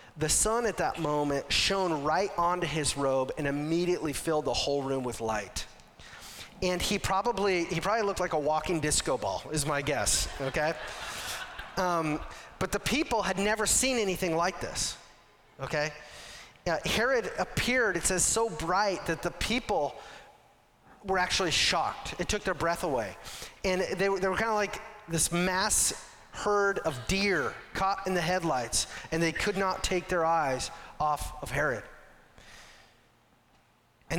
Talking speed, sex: 160 wpm, male